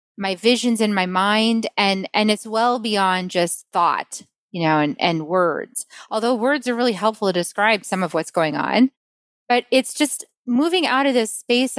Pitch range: 195-255 Hz